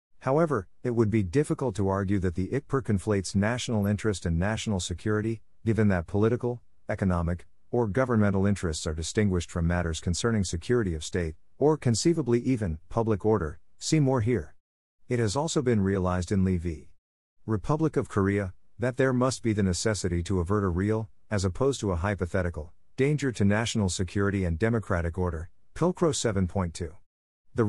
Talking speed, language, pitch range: 165 wpm, English, 90-115 Hz